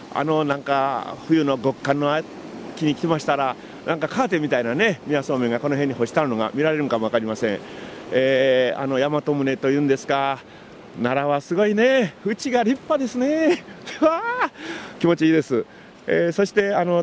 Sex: male